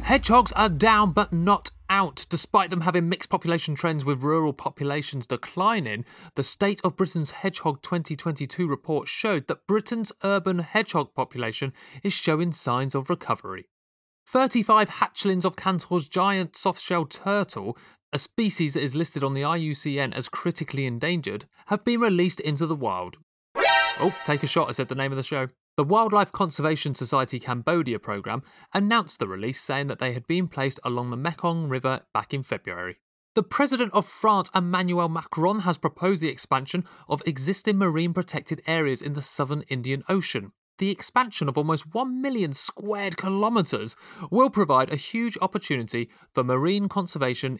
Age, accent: 30-49, British